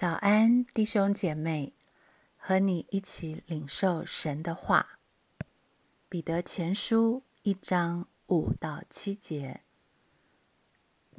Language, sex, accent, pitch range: Chinese, female, native, 165-220 Hz